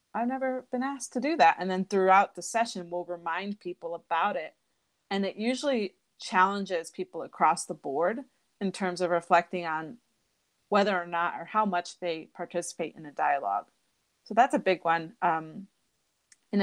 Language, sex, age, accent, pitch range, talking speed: English, female, 30-49, American, 175-205 Hz, 175 wpm